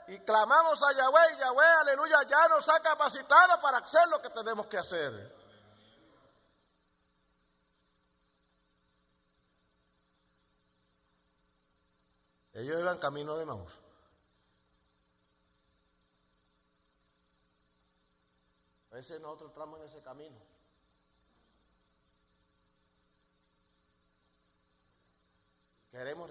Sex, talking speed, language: male, 70 wpm, English